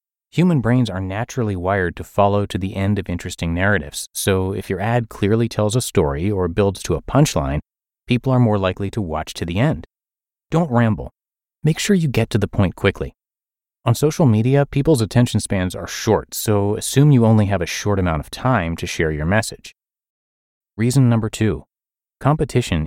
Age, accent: 30-49, American